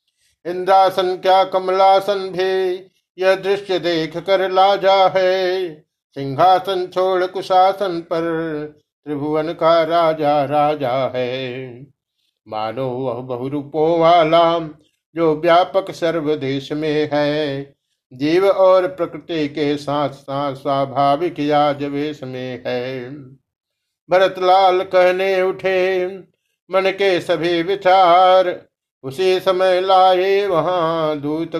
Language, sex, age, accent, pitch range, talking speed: Hindi, male, 50-69, native, 145-185 Hz, 95 wpm